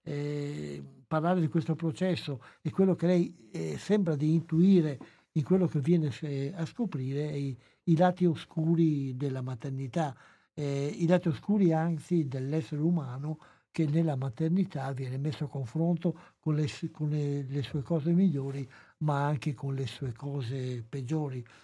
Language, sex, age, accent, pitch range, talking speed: Italian, male, 60-79, native, 135-160 Hz, 145 wpm